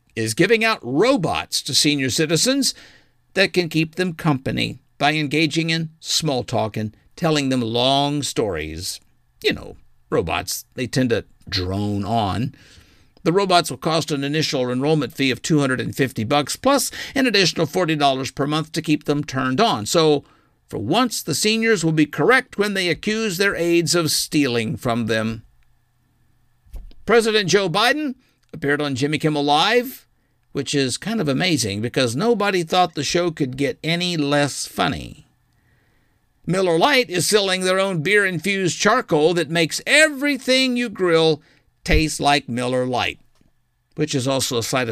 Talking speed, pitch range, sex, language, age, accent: 150 wpm, 125-180 Hz, male, English, 50-69, American